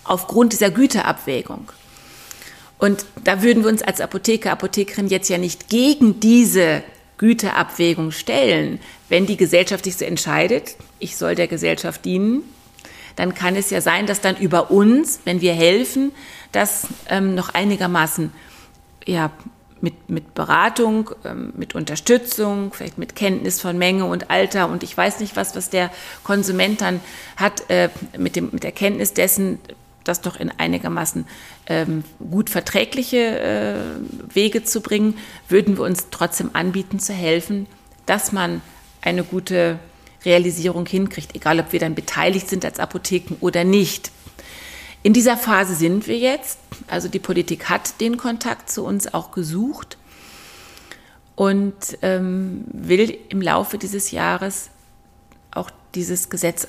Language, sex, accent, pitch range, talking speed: German, female, German, 175-210 Hz, 140 wpm